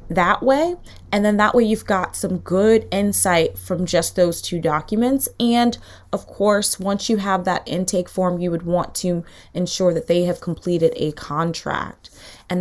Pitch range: 165-195 Hz